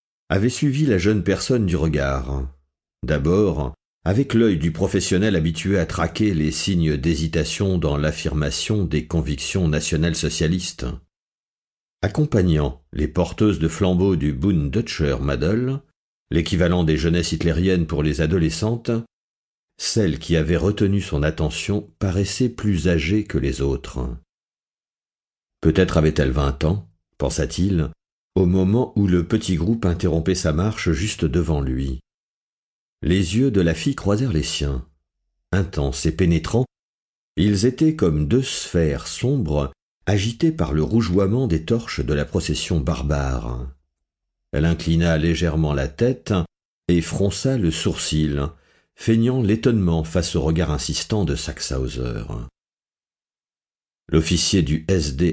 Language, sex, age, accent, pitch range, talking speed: French, male, 50-69, French, 75-100 Hz, 125 wpm